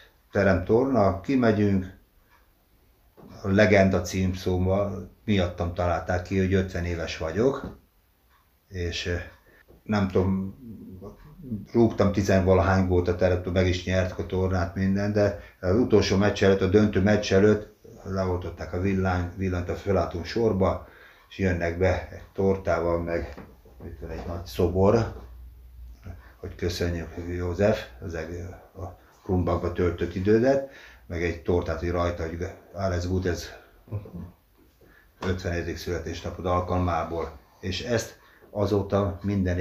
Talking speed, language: 120 wpm, Hungarian